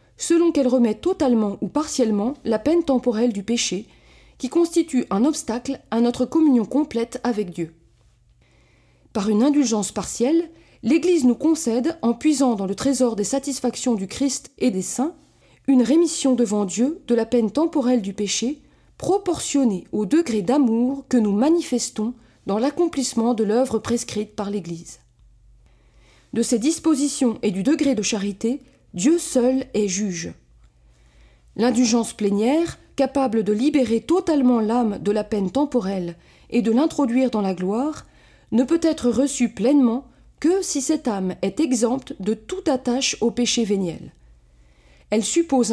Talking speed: 145 wpm